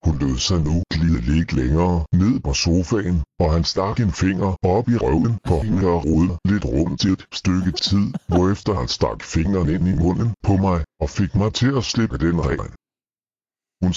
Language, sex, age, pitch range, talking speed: Danish, female, 60-79, 85-105 Hz, 195 wpm